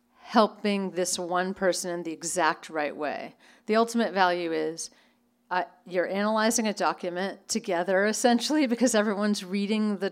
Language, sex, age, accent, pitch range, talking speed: English, female, 40-59, American, 180-235 Hz, 140 wpm